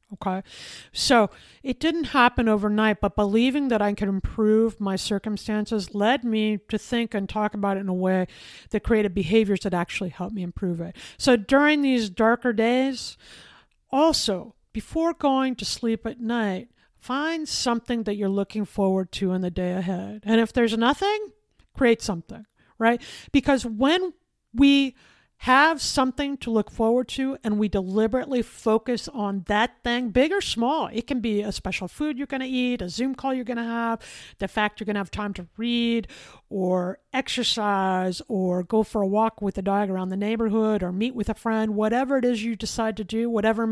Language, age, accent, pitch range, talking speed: English, 50-69, American, 200-245 Hz, 185 wpm